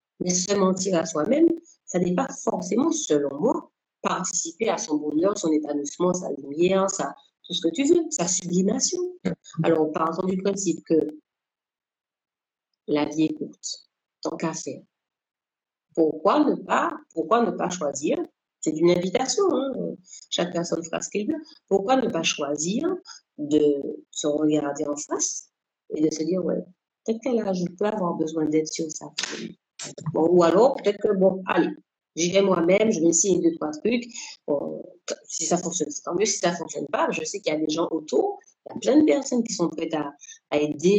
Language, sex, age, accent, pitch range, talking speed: French, female, 50-69, French, 160-245 Hz, 190 wpm